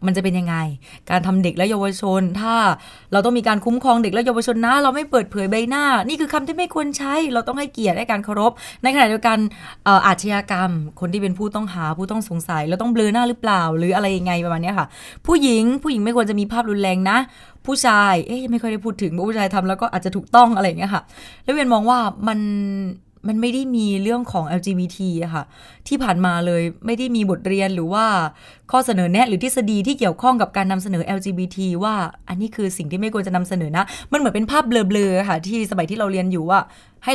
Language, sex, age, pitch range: Thai, female, 20-39, 185-235 Hz